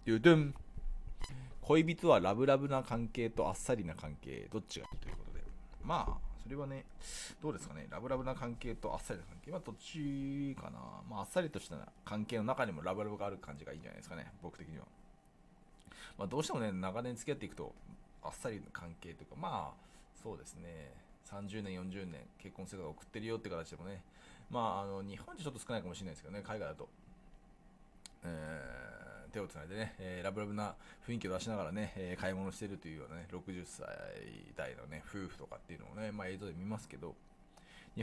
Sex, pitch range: male, 90-115 Hz